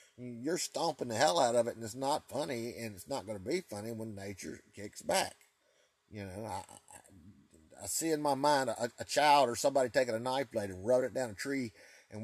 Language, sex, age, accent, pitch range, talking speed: English, male, 30-49, American, 100-120 Hz, 230 wpm